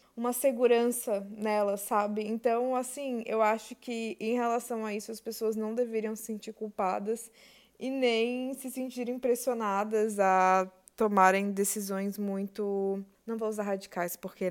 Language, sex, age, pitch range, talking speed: Portuguese, female, 20-39, 210-240 Hz, 140 wpm